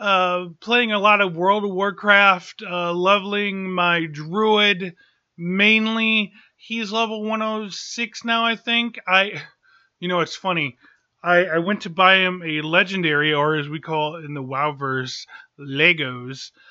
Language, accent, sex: English, American, male